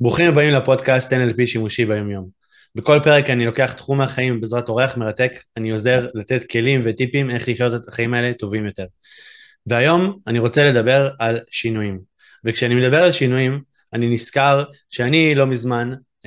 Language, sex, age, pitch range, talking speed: Hebrew, male, 20-39, 115-135 Hz, 155 wpm